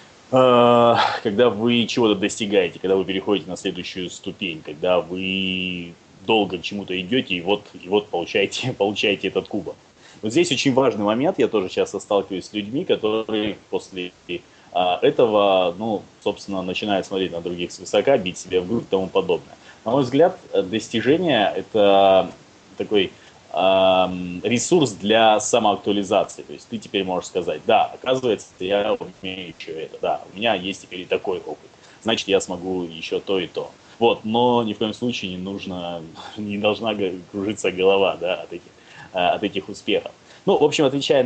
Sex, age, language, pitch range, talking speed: male, 20-39, Russian, 95-110 Hz, 160 wpm